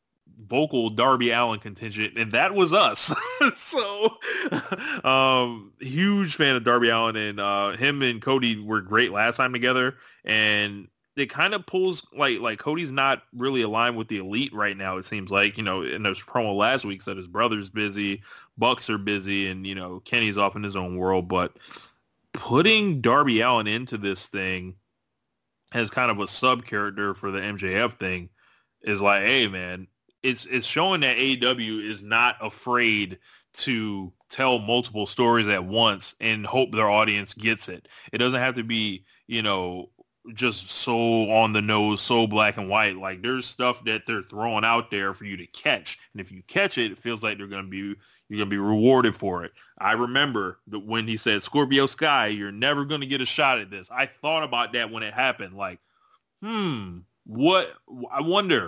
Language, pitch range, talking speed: English, 100-125 Hz, 185 wpm